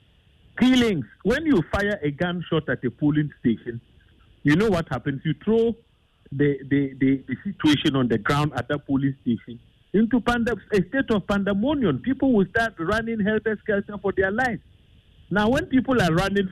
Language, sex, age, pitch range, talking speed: English, male, 50-69, 135-205 Hz, 175 wpm